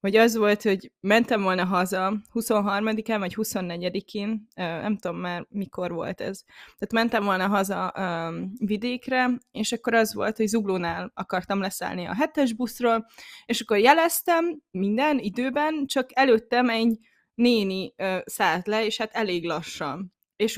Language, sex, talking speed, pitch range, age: Hungarian, female, 145 wpm, 200-265 Hz, 20-39